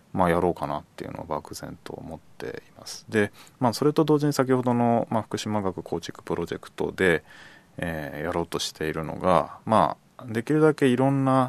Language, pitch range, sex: Japanese, 85-120 Hz, male